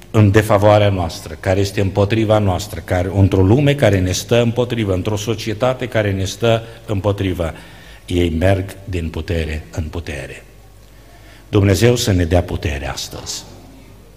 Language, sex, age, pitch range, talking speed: Romanian, male, 50-69, 100-125 Hz, 135 wpm